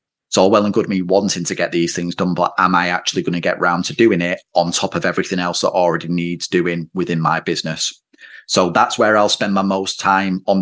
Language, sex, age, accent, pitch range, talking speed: English, male, 30-49, British, 90-105 Hz, 250 wpm